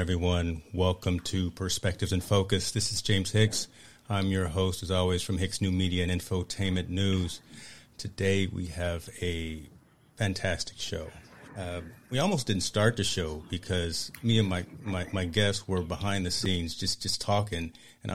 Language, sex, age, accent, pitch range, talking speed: English, male, 40-59, American, 90-105 Hz, 165 wpm